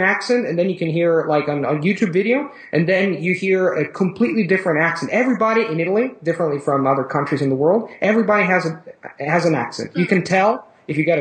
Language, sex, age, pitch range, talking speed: Italian, male, 30-49, 150-195 Hz, 220 wpm